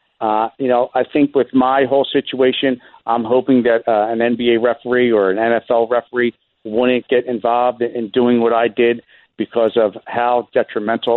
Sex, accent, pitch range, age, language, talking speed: male, American, 110-130 Hz, 50-69, English, 185 wpm